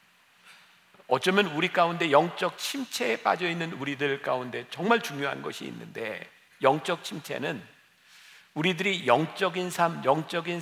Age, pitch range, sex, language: 50-69, 145-200 Hz, male, Korean